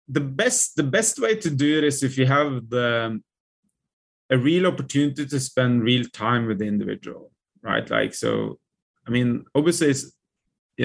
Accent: Norwegian